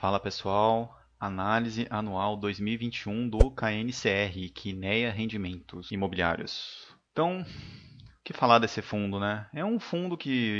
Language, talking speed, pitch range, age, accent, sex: Portuguese, 120 wpm, 100-135 Hz, 30-49, Brazilian, male